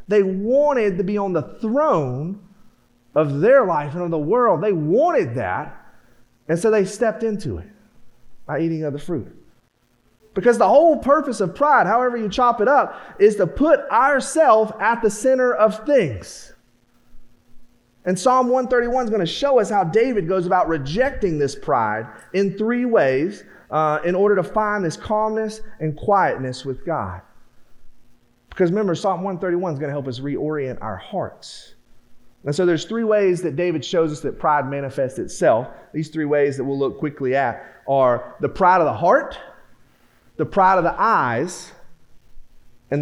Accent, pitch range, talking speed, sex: American, 130-215 Hz, 170 wpm, male